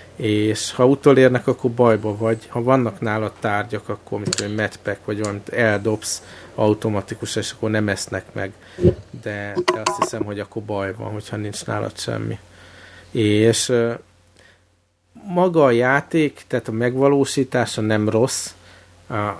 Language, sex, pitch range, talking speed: Hungarian, male, 105-120 Hz, 135 wpm